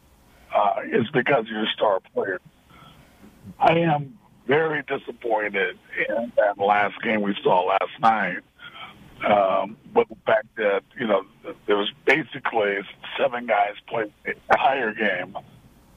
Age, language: 50-69, English